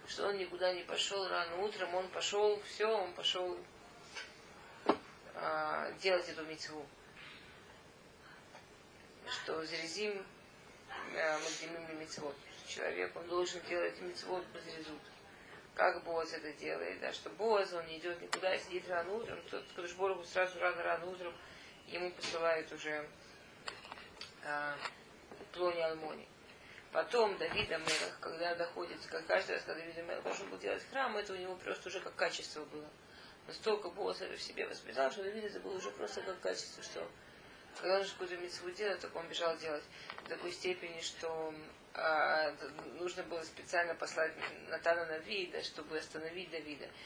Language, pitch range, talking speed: Russian, 160-185 Hz, 140 wpm